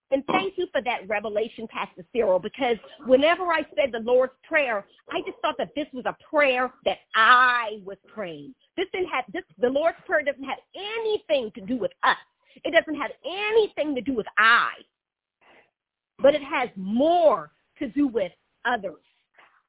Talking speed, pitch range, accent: 175 wpm, 235-340 Hz, American